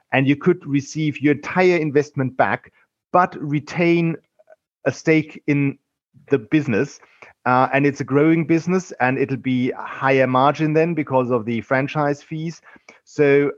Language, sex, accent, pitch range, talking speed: English, male, German, 130-155 Hz, 150 wpm